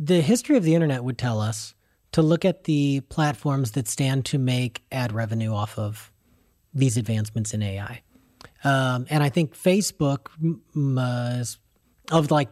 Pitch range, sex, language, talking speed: 120-150 Hz, male, English, 160 wpm